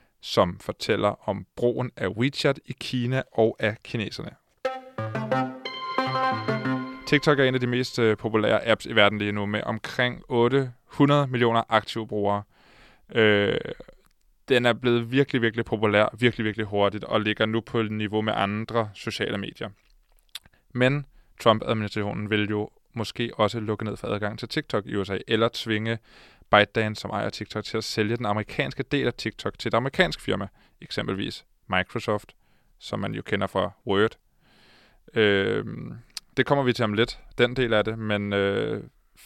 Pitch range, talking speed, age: 105-125 Hz, 155 wpm, 20-39